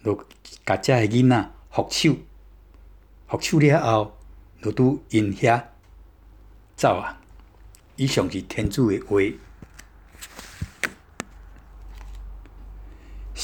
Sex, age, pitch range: male, 60-79, 90-130 Hz